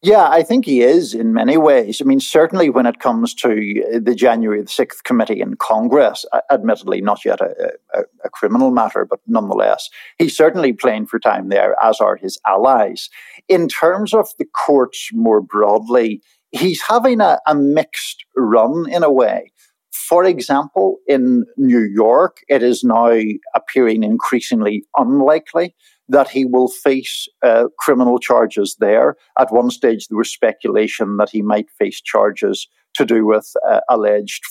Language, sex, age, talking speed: English, male, 50-69, 160 wpm